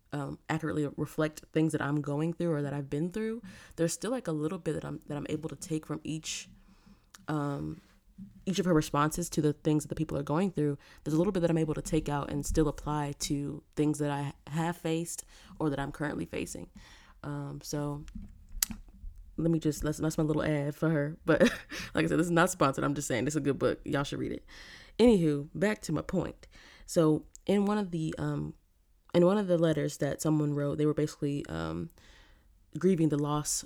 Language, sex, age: English, female, 20-39